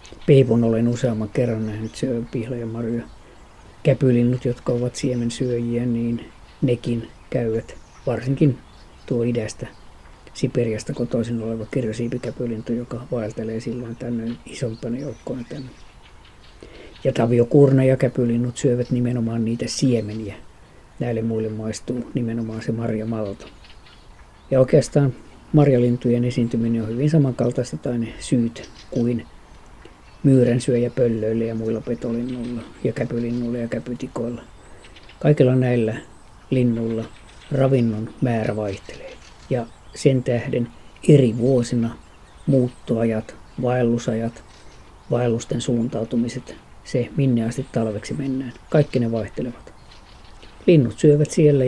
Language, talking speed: Finnish, 105 wpm